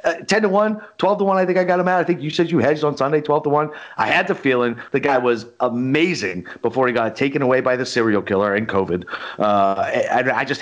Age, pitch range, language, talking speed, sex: 30-49, 105-145 Hz, English, 265 wpm, male